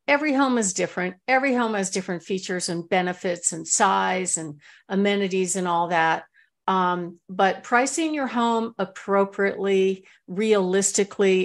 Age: 50-69